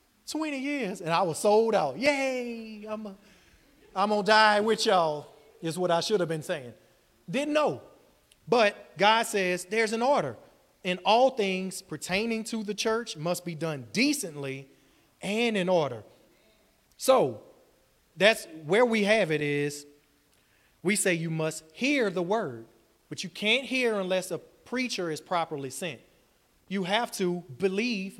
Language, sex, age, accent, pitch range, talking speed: English, male, 30-49, American, 160-220 Hz, 150 wpm